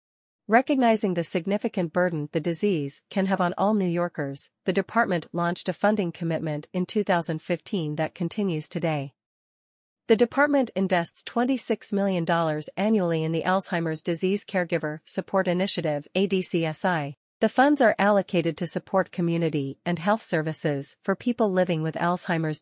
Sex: female